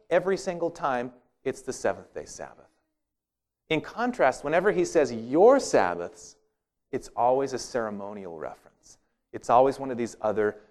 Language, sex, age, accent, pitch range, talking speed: English, male, 40-59, American, 110-155 Hz, 140 wpm